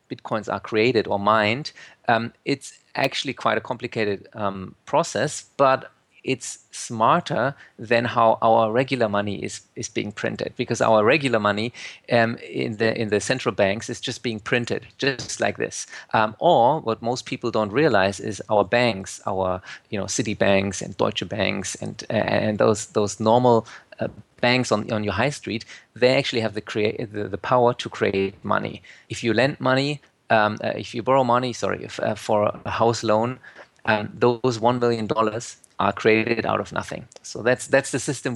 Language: English